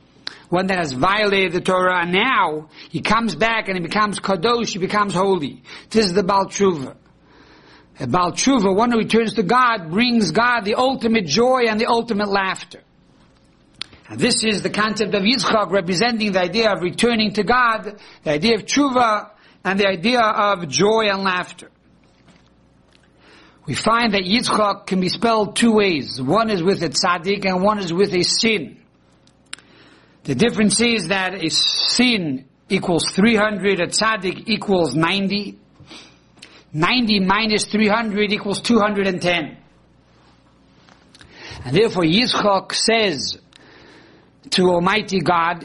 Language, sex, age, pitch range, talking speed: English, male, 60-79, 180-225 Hz, 140 wpm